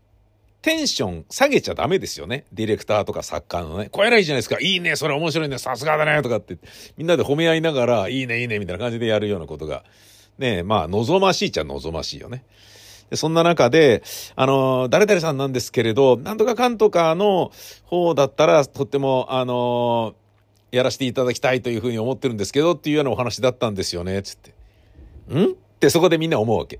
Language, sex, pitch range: Japanese, male, 105-165 Hz